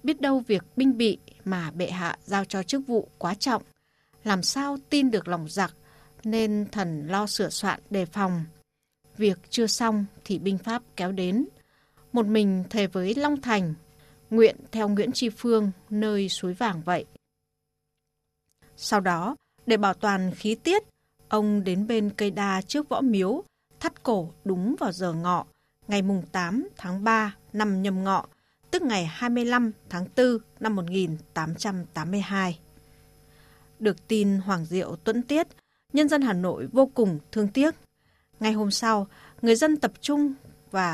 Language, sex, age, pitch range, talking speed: Vietnamese, female, 20-39, 185-235 Hz, 155 wpm